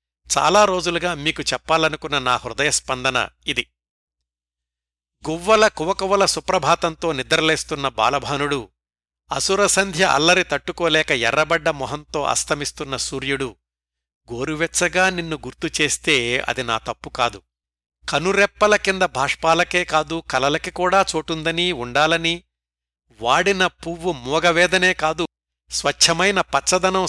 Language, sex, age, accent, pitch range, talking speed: Telugu, male, 60-79, native, 125-170 Hz, 85 wpm